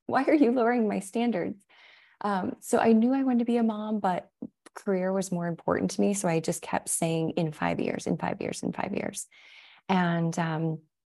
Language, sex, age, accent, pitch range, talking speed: English, female, 20-39, American, 160-205 Hz, 210 wpm